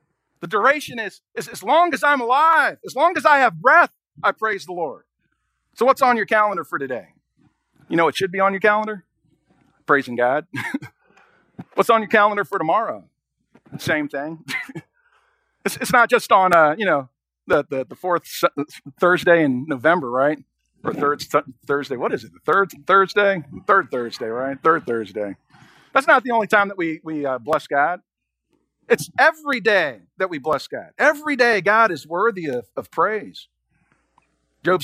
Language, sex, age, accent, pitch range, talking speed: English, male, 50-69, American, 165-265 Hz, 185 wpm